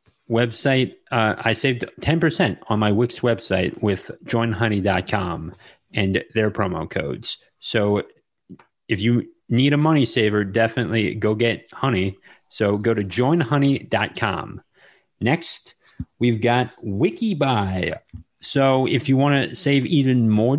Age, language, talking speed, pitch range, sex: 30-49, English, 120 wpm, 110-135 Hz, male